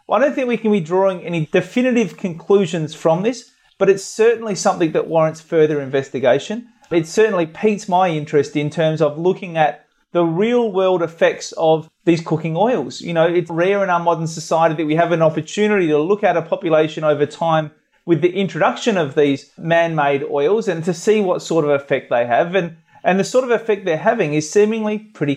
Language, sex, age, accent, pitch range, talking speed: English, male, 30-49, Australian, 160-210 Hz, 200 wpm